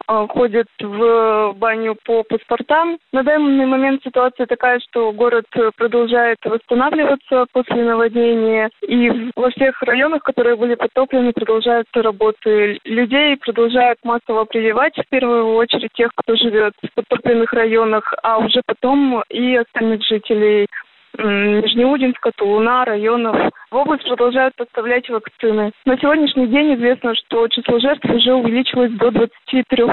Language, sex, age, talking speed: Russian, female, 20-39, 125 wpm